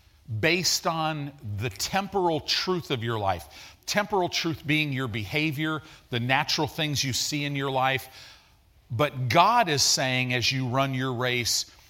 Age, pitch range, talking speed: 40-59, 125-165 Hz, 150 wpm